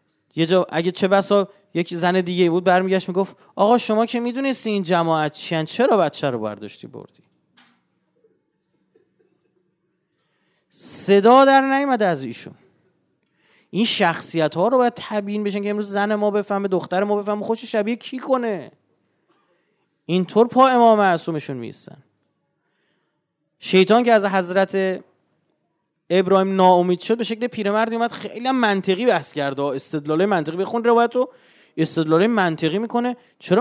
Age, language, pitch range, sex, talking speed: 30-49, Persian, 180-235 Hz, male, 130 wpm